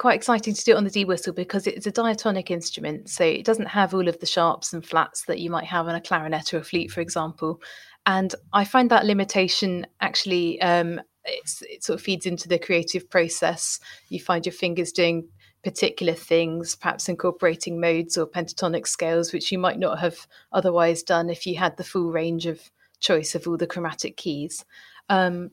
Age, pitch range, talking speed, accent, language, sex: 30-49, 170-200 Hz, 195 wpm, British, English, female